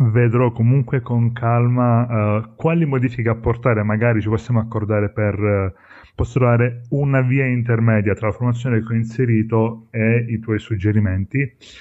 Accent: native